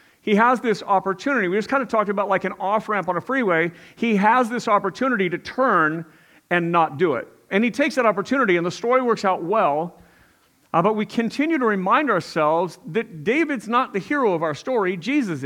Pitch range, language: 175-245 Hz, English